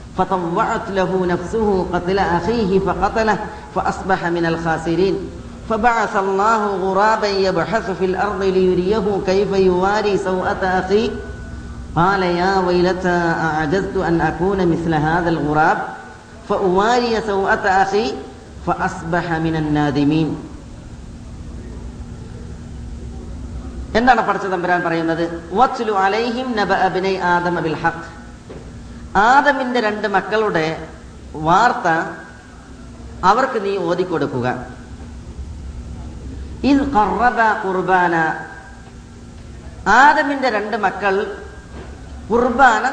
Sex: female